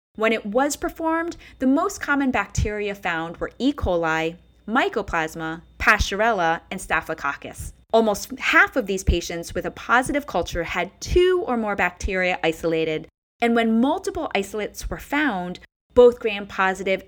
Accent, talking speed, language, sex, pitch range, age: American, 135 wpm, English, female, 175-255 Hz, 30-49